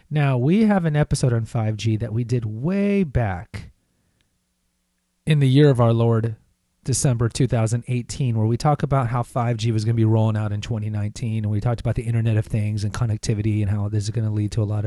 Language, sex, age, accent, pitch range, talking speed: English, male, 30-49, American, 110-135 Hz, 220 wpm